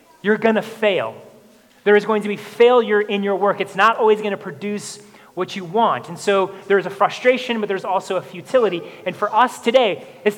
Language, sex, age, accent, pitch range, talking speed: English, male, 30-49, American, 205-245 Hz, 215 wpm